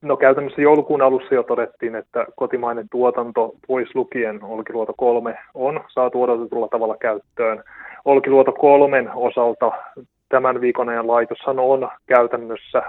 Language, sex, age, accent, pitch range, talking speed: Finnish, male, 20-39, native, 120-135 Hz, 125 wpm